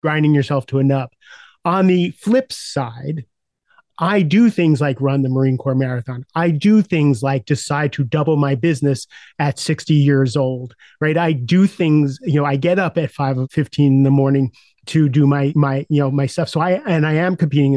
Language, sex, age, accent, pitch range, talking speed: English, male, 30-49, American, 140-165 Hz, 205 wpm